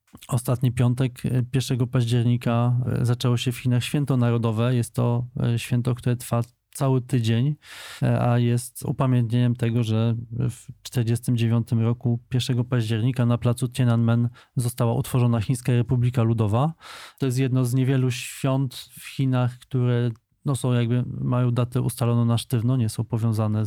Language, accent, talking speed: Polish, native, 140 wpm